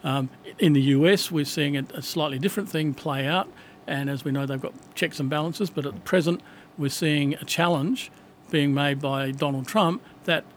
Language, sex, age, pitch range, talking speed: English, male, 50-69, 140-165 Hz, 205 wpm